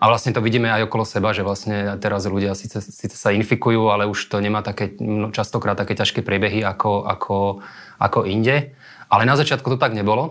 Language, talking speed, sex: Slovak, 200 wpm, male